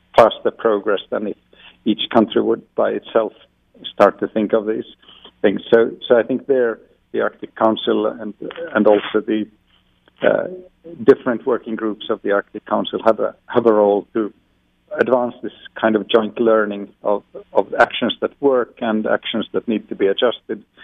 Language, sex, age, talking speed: English, male, 50-69, 170 wpm